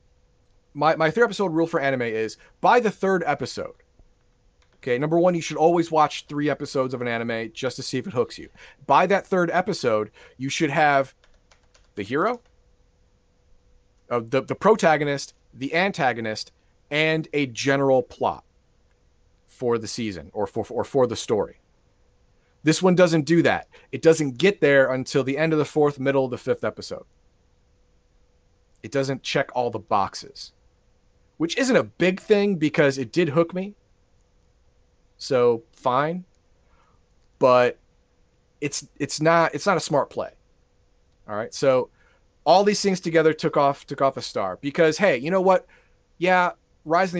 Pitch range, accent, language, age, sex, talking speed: 110-170 Hz, American, English, 40-59, male, 160 wpm